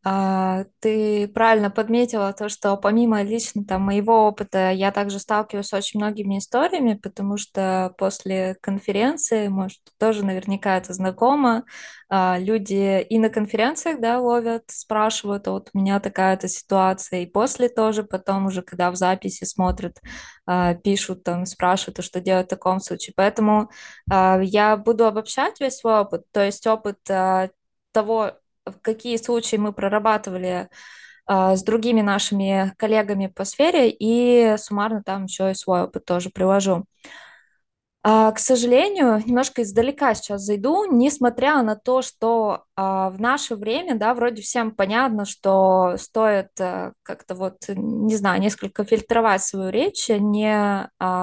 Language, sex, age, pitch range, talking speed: Russian, female, 20-39, 190-225 Hz, 145 wpm